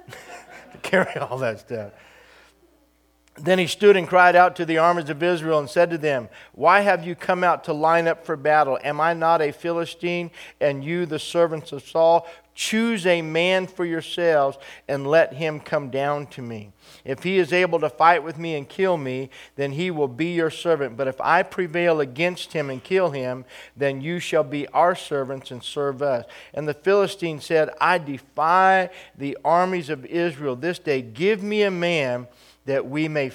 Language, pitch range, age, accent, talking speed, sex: English, 140-175 Hz, 50-69, American, 195 wpm, male